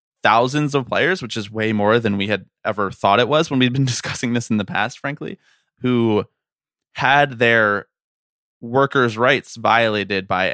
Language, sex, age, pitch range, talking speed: English, male, 20-39, 100-120 Hz, 170 wpm